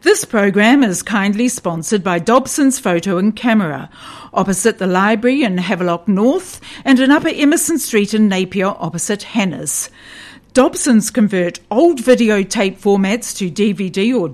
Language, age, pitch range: English, 50-69, 190-255 Hz